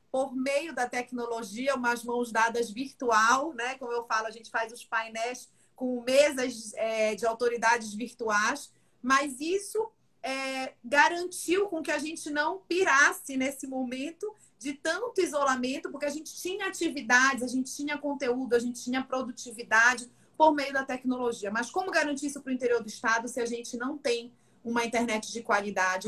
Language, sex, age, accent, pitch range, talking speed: Portuguese, female, 40-59, Brazilian, 235-305 Hz, 165 wpm